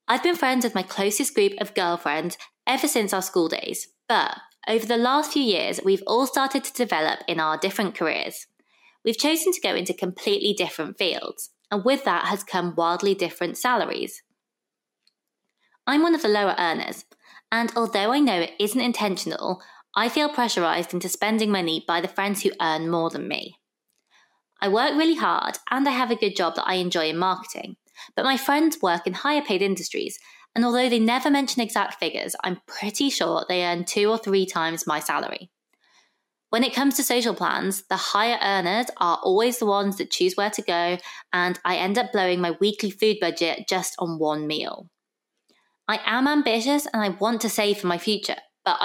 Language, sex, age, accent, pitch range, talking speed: English, female, 20-39, British, 180-245 Hz, 190 wpm